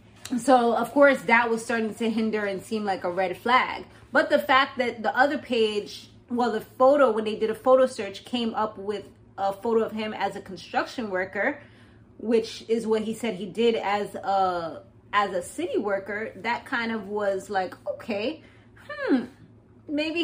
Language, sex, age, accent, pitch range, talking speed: English, female, 20-39, American, 200-255 Hz, 180 wpm